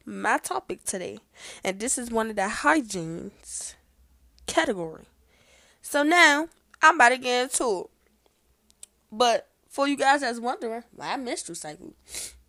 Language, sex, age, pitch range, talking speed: English, female, 10-29, 205-265 Hz, 135 wpm